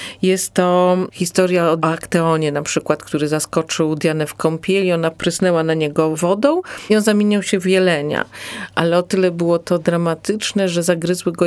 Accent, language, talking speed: native, Polish, 175 wpm